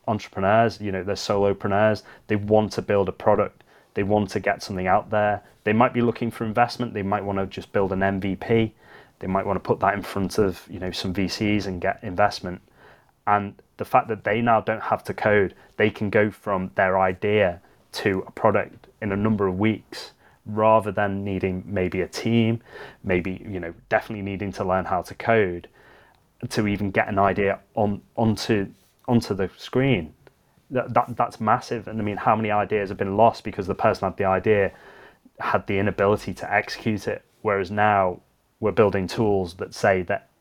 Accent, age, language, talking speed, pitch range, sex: British, 20-39, English, 195 wpm, 95-110 Hz, male